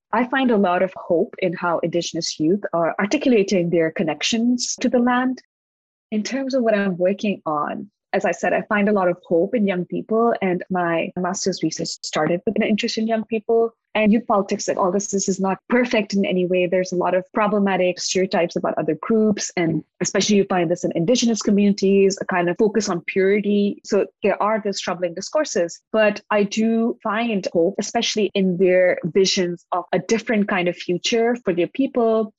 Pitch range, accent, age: 180-225 Hz, Indian, 20-39